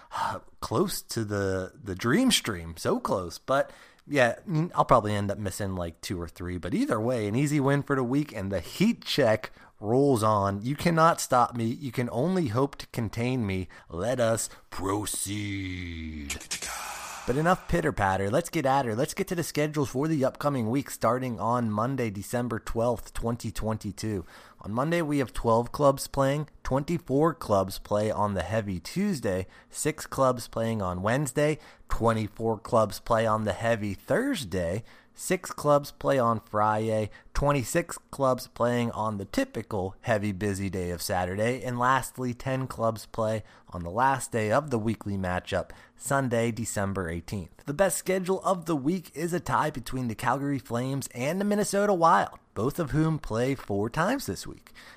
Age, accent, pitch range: 30-49, American, 100-140 Hz